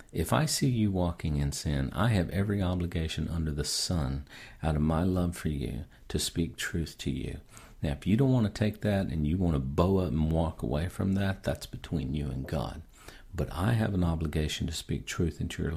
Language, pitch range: English, 75-100 Hz